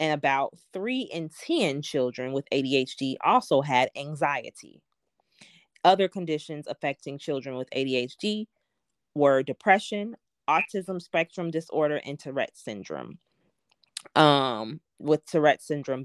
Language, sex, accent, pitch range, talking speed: English, female, American, 140-185 Hz, 110 wpm